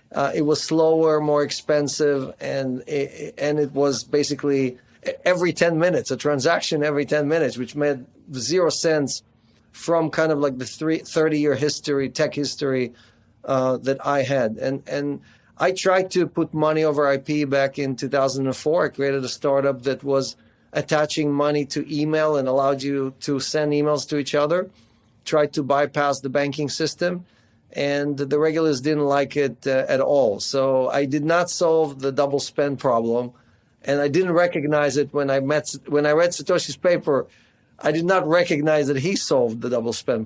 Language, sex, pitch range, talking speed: English, male, 130-150 Hz, 180 wpm